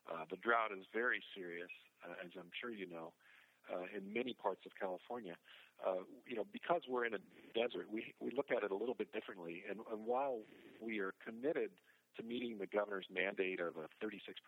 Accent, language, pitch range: American, English, 90-110 Hz